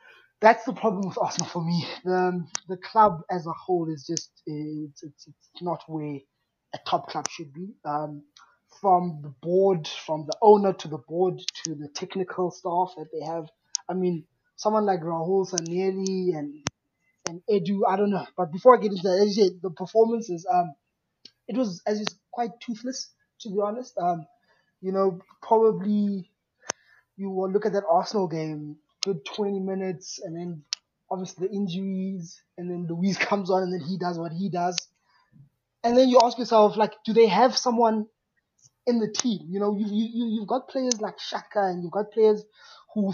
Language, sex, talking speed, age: English, male, 180 wpm, 20-39